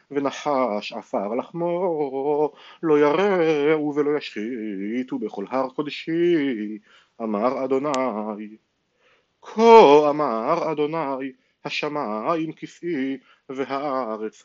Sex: male